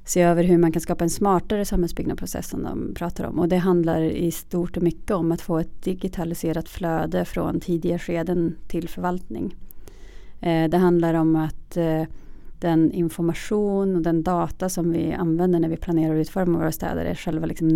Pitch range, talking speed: 165-185 Hz, 185 wpm